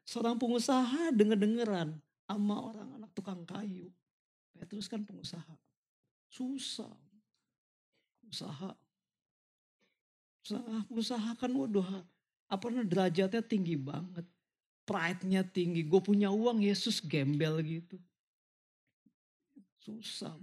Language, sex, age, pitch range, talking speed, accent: Indonesian, male, 40-59, 210-300 Hz, 95 wpm, native